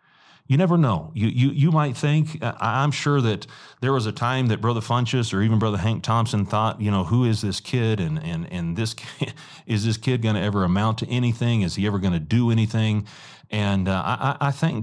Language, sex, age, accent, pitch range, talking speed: English, male, 40-59, American, 95-120 Hz, 230 wpm